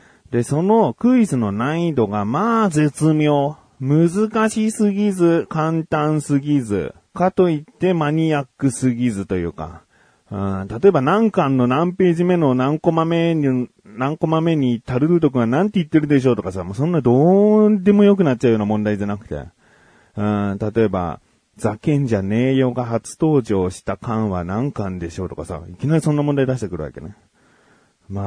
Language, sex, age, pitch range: Japanese, male, 30-49, 105-165 Hz